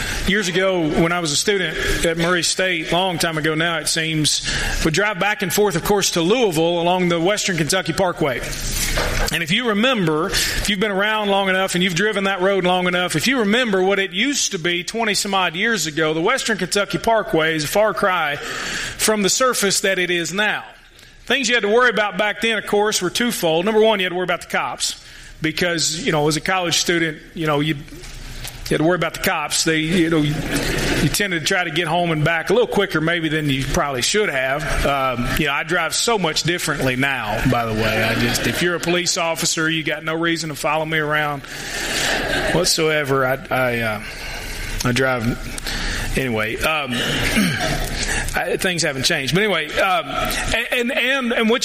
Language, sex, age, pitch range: English, male, 40-59, 155-200 Hz